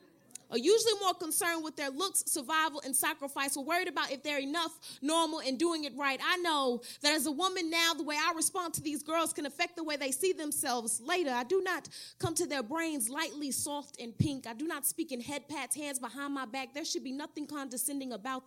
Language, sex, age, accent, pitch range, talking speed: English, female, 30-49, American, 245-330 Hz, 230 wpm